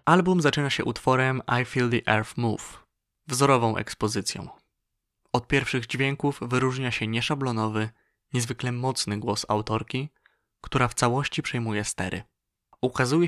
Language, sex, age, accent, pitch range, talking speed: Polish, male, 20-39, native, 115-140 Hz, 120 wpm